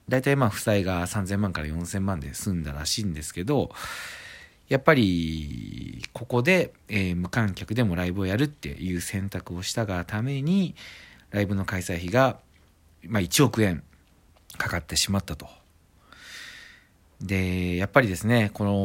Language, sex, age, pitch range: Japanese, male, 40-59, 85-120 Hz